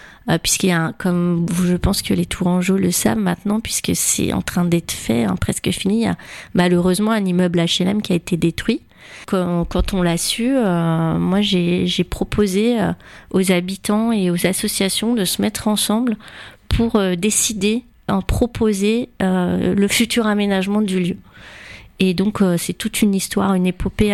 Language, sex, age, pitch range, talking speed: French, female, 30-49, 180-210 Hz, 175 wpm